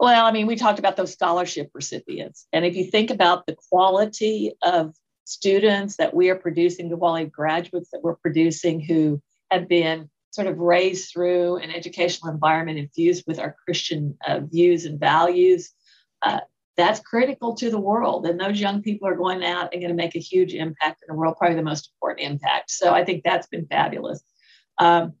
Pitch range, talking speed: 165-190 Hz, 190 wpm